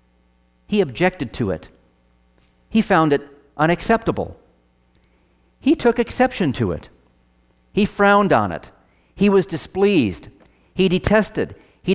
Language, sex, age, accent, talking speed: English, male, 50-69, American, 115 wpm